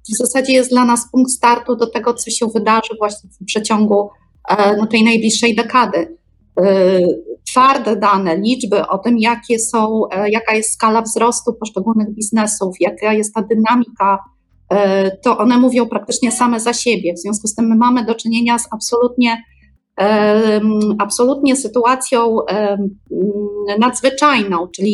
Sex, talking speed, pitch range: female, 135 wpm, 205-245 Hz